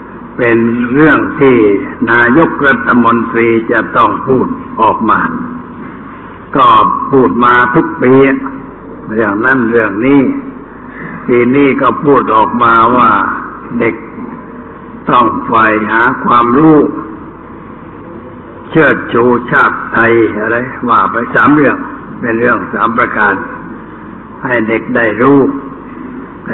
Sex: male